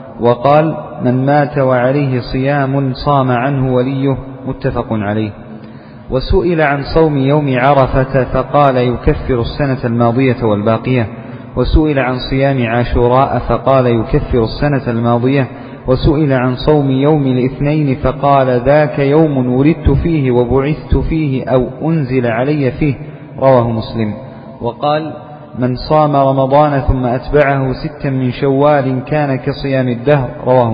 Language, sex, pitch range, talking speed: Arabic, male, 125-145 Hz, 115 wpm